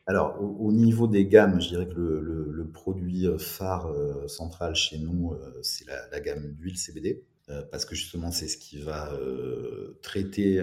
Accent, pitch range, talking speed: French, 75-95 Hz, 190 wpm